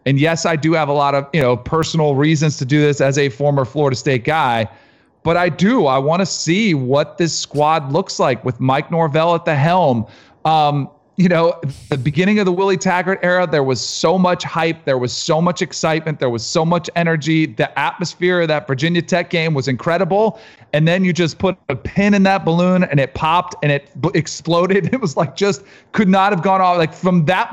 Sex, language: male, English